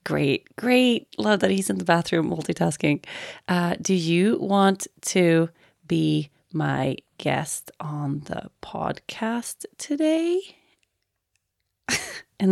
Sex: female